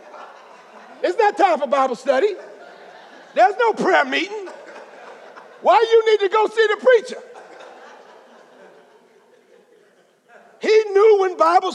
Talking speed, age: 115 wpm, 50-69